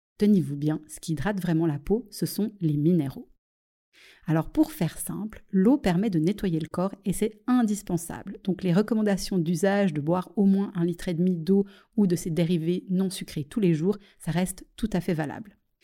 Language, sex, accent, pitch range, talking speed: French, female, French, 165-205 Hz, 200 wpm